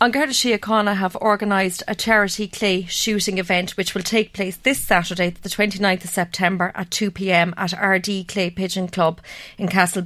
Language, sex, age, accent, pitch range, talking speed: English, female, 30-49, Irish, 175-210 Hz, 160 wpm